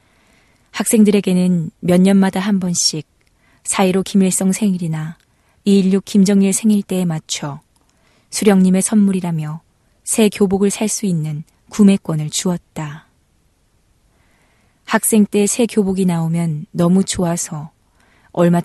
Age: 20-39